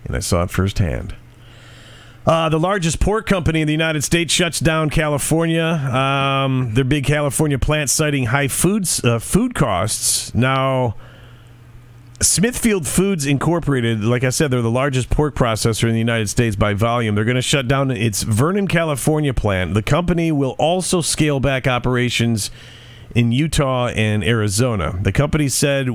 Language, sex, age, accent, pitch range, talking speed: English, male, 40-59, American, 115-150 Hz, 160 wpm